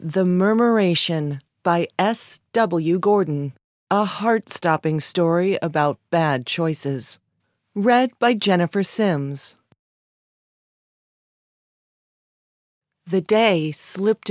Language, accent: English, American